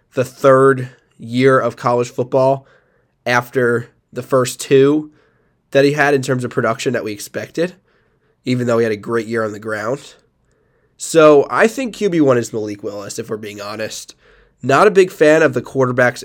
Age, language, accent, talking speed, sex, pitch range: 20-39, English, American, 180 wpm, male, 115-145 Hz